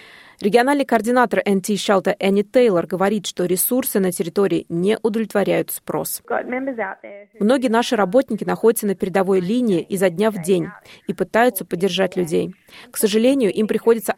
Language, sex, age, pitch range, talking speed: Russian, female, 20-39, 190-225 Hz, 135 wpm